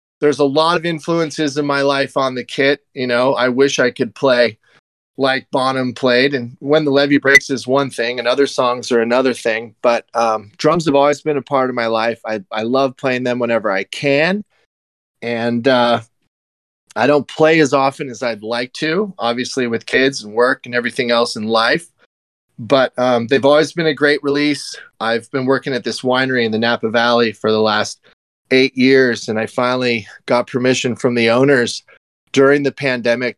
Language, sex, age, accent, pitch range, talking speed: English, male, 30-49, American, 120-140 Hz, 195 wpm